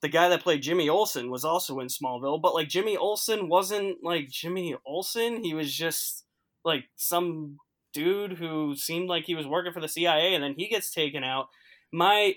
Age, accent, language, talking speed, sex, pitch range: 10-29, American, English, 195 wpm, male, 145-180 Hz